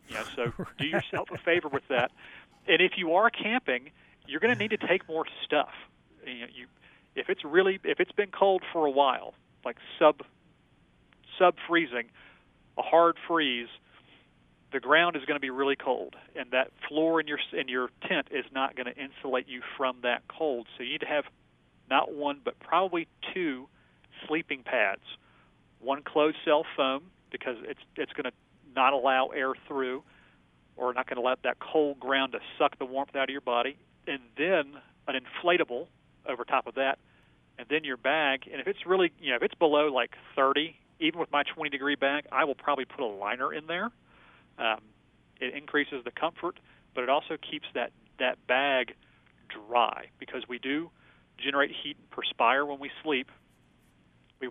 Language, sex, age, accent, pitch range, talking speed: English, male, 40-59, American, 125-160 Hz, 185 wpm